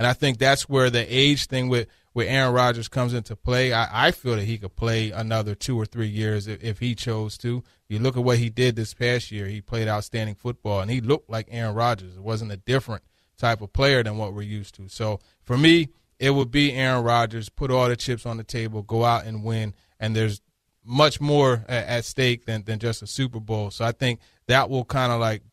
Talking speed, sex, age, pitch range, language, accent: 240 wpm, male, 30-49, 110-130 Hz, English, American